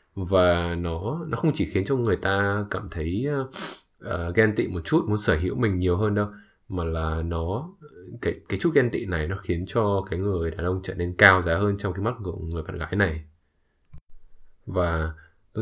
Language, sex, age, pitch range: English, male, 20-39, 85-105 Hz